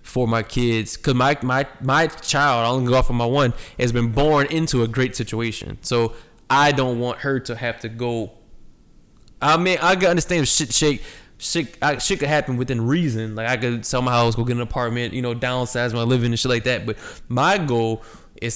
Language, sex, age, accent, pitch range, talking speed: English, male, 10-29, American, 115-135 Hz, 220 wpm